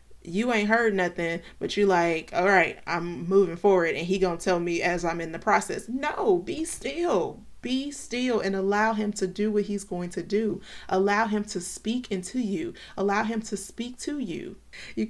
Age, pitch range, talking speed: 30-49, 185-220 Hz, 200 wpm